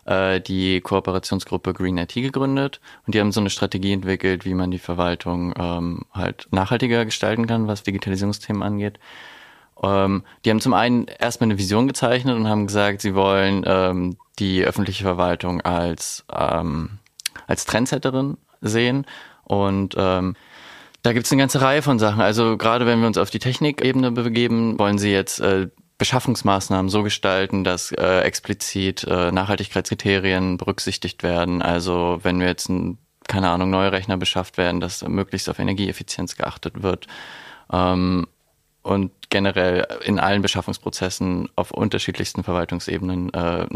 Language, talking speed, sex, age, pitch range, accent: German, 145 wpm, male, 20-39, 90-110 Hz, German